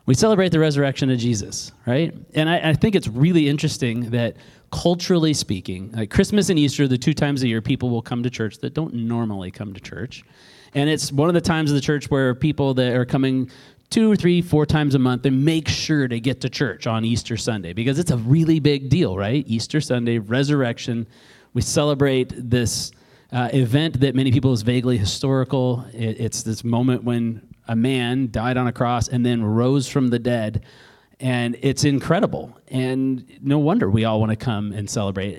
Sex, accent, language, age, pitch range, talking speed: male, American, English, 30-49, 120-150 Hz, 200 wpm